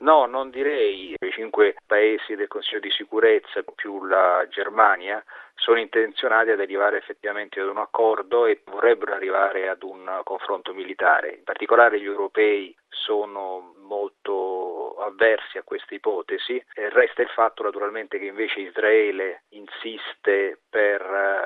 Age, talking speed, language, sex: 40-59, 130 wpm, Italian, male